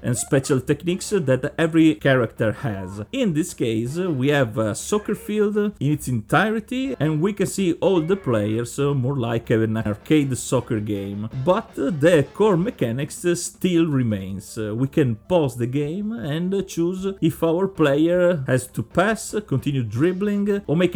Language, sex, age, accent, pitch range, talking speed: English, male, 40-59, Italian, 120-175 Hz, 155 wpm